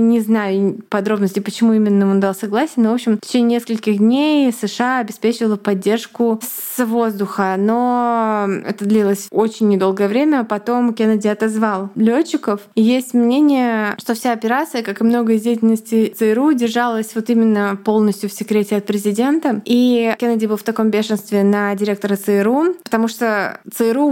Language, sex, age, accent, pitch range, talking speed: Russian, female, 20-39, native, 200-230 Hz, 150 wpm